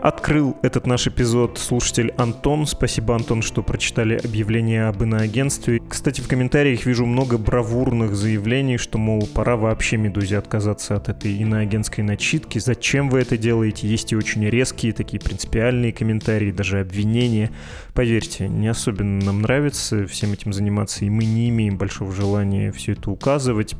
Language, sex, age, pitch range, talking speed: Russian, male, 20-39, 105-120 Hz, 155 wpm